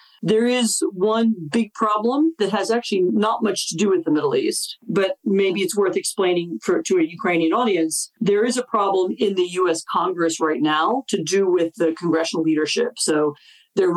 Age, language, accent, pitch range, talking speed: 40-59, Ukrainian, American, 165-225 Hz, 190 wpm